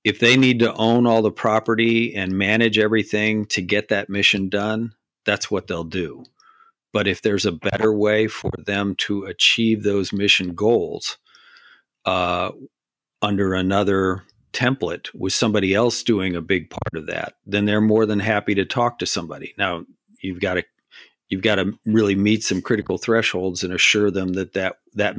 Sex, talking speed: male, 175 wpm